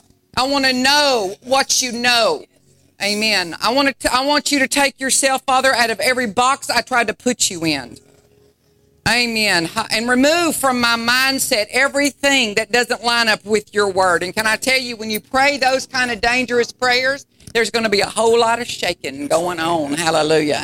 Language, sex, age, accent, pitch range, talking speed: English, female, 50-69, American, 190-250 Hz, 190 wpm